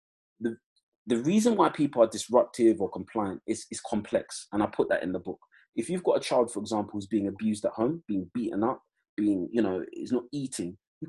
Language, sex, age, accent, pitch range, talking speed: English, male, 30-49, British, 100-120 Hz, 220 wpm